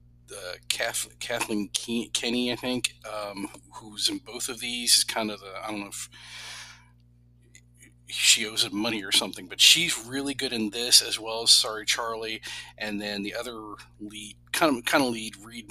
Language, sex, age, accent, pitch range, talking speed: English, male, 40-59, American, 100-120 Hz, 170 wpm